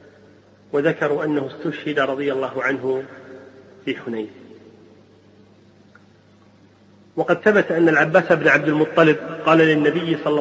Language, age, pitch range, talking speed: Arabic, 40-59, 130-160 Hz, 105 wpm